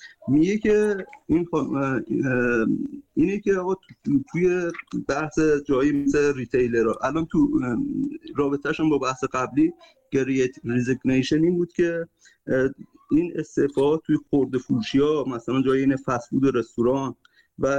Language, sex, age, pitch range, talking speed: Persian, male, 50-69, 130-185 Hz, 120 wpm